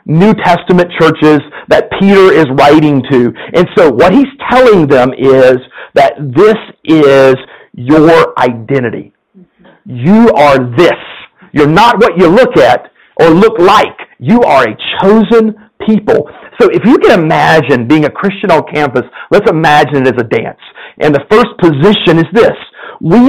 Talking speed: 155 wpm